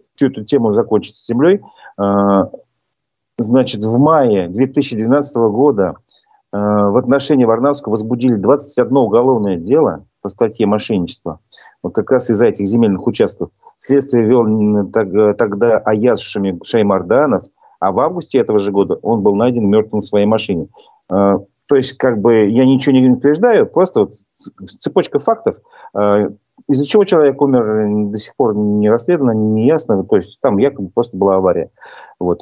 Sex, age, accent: male, 40-59, native